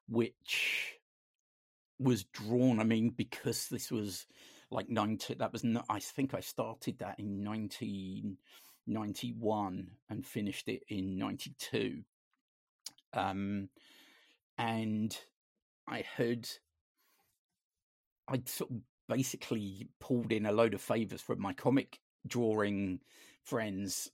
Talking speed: 115 wpm